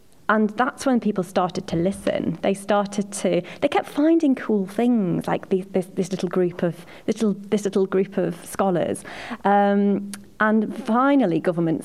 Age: 30-49